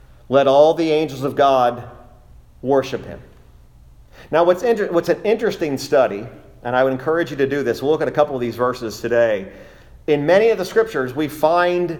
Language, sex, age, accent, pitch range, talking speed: English, male, 40-59, American, 120-155 Hz, 190 wpm